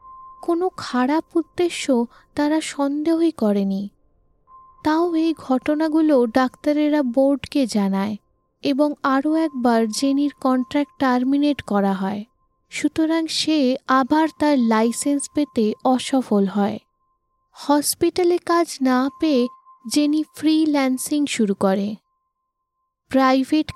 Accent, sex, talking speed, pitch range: native, female, 95 wpm, 240-310 Hz